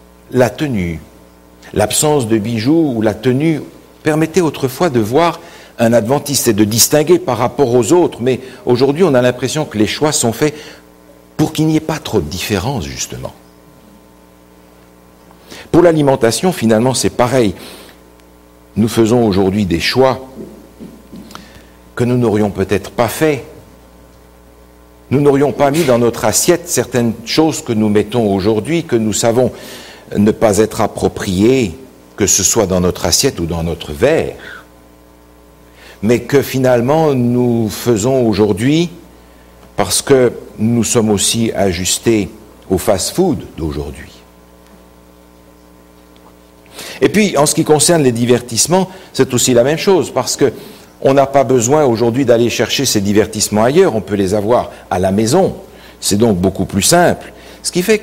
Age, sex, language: 60-79, male, French